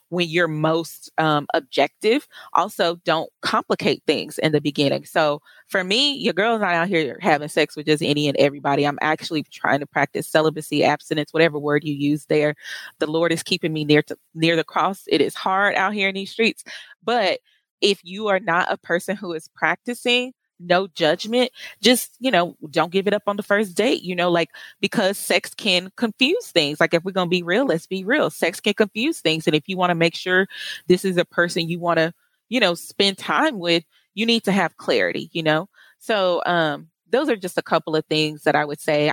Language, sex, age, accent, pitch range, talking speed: English, female, 20-39, American, 155-195 Hz, 215 wpm